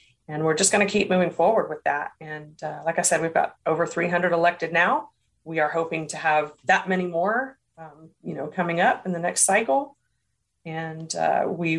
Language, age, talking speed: English, 30-49, 210 wpm